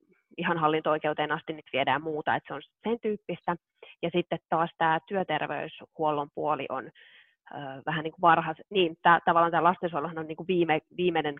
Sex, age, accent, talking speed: female, 20-39, native, 165 wpm